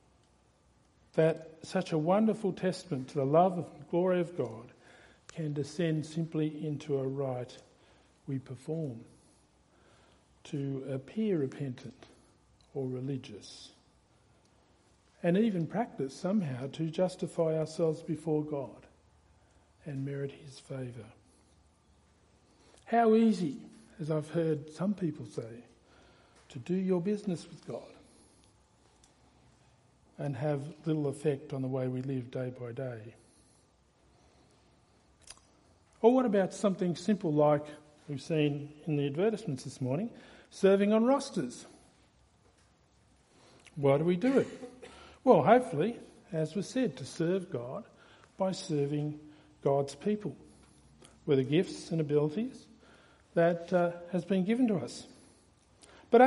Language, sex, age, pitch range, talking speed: English, male, 50-69, 135-185 Hz, 115 wpm